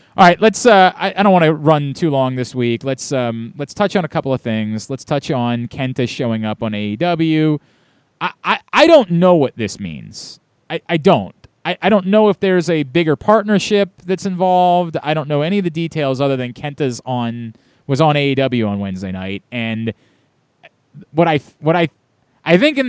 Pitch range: 140-195 Hz